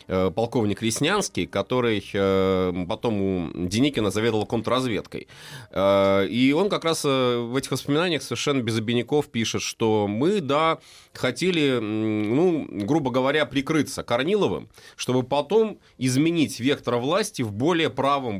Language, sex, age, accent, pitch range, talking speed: Russian, male, 30-49, native, 100-140 Hz, 115 wpm